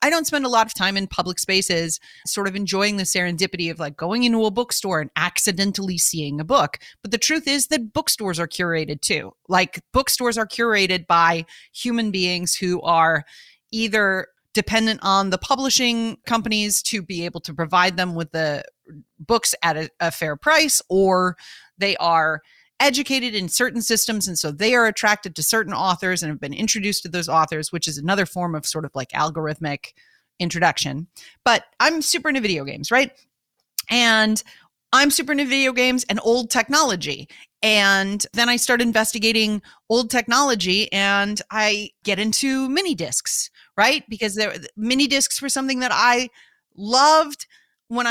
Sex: female